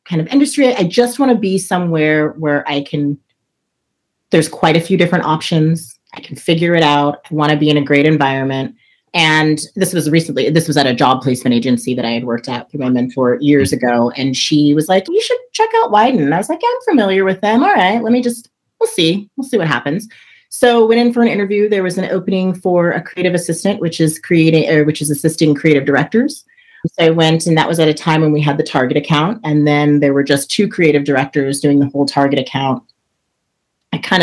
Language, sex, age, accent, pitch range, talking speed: English, female, 30-49, American, 145-205 Hz, 235 wpm